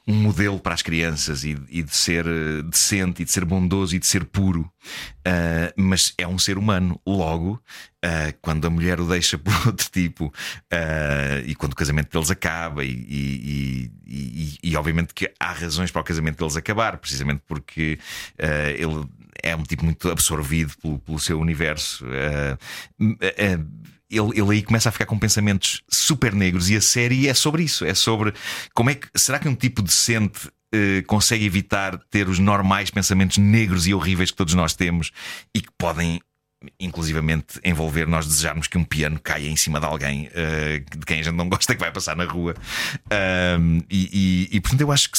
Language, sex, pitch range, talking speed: Portuguese, male, 80-95 Hz, 180 wpm